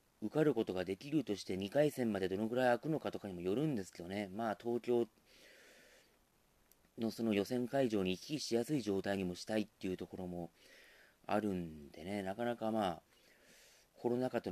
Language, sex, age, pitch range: Japanese, male, 40-59, 95-130 Hz